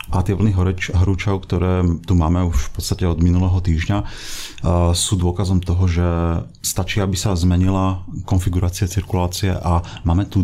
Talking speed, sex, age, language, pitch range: 150 wpm, male, 40-59, Slovak, 90-100 Hz